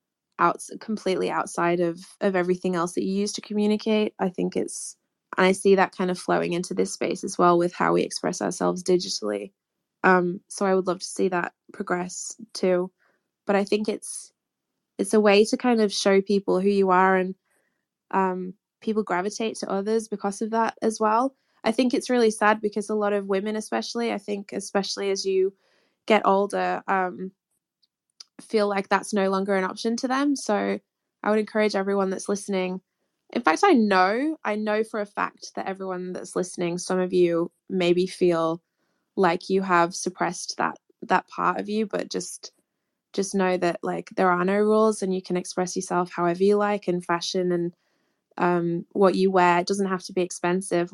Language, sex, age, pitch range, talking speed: English, female, 20-39, 180-210 Hz, 190 wpm